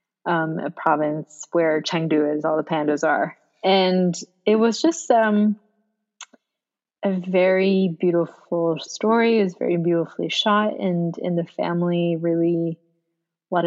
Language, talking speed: English, 130 wpm